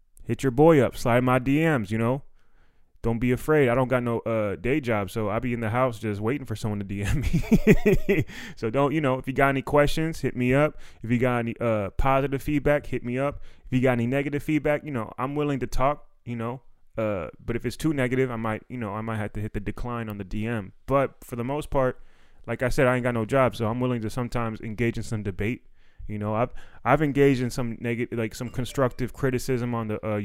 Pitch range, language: 110-135 Hz, English